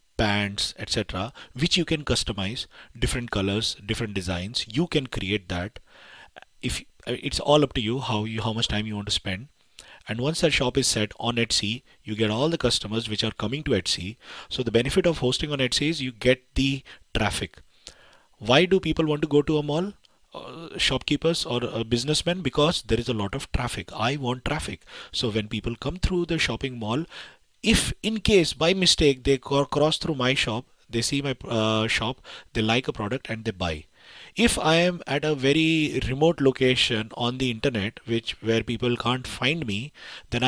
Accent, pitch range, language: Indian, 110-135 Hz, English